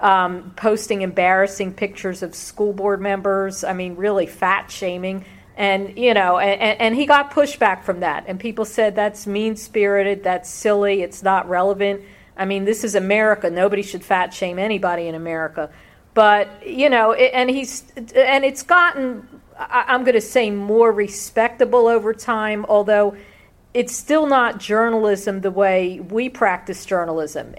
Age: 50-69